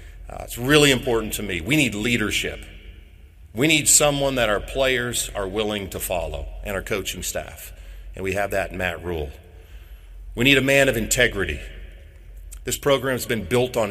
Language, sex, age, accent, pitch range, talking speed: English, male, 40-59, American, 90-130 Hz, 175 wpm